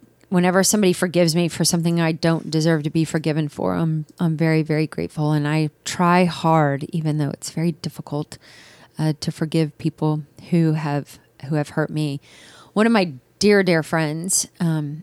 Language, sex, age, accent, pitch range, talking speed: English, female, 30-49, American, 150-170 Hz, 170 wpm